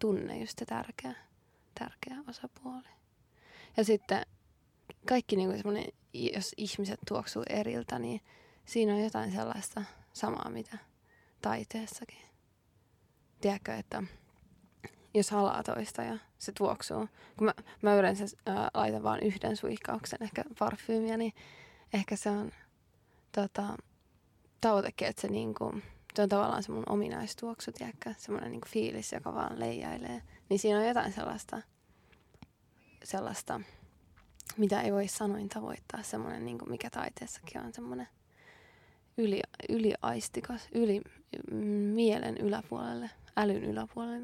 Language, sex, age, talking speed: Finnish, female, 20-39, 115 wpm